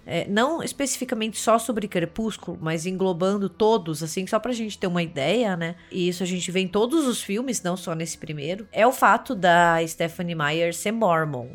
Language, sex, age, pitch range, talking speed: Portuguese, female, 20-39, 165-235 Hz, 190 wpm